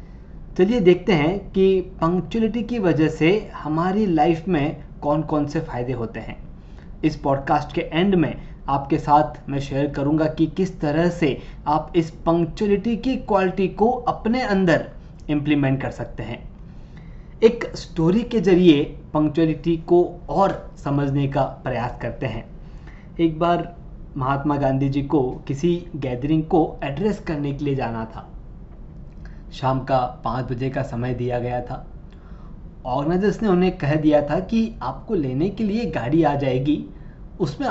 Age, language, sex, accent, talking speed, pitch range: 20-39, Hindi, male, native, 150 wpm, 140-185 Hz